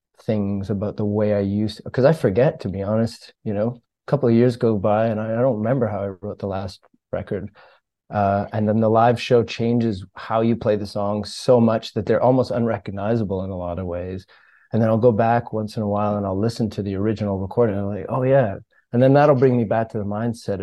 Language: English